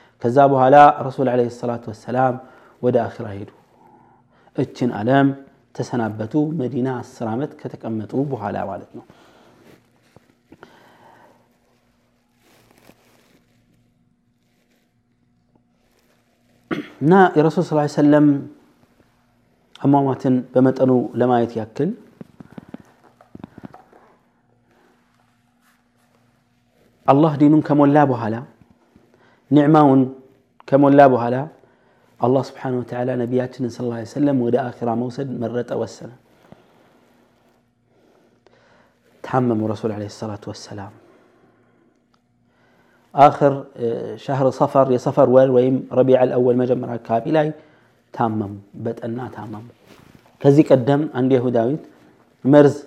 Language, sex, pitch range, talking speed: Amharic, male, 120-140 Hz, 80 wpm